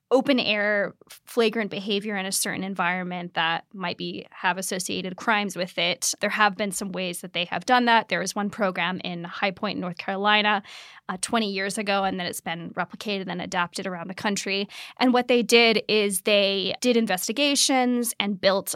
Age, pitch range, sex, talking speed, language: 20-39, 195-235 Hz, female, 185 wpm, English